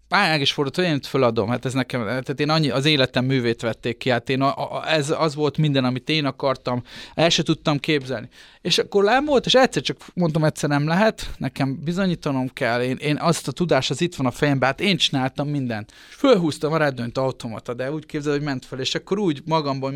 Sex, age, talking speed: male, 30-49, 220 wpm